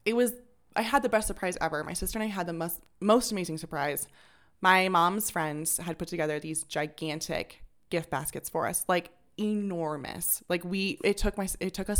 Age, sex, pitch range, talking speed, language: 20-39, female, 155-190 Hz, 200 wpm, English